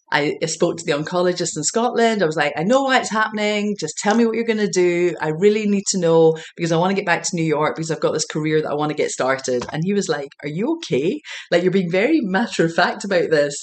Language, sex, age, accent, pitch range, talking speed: English, female, 30-49, British, 155-195 Hz, 270 wpm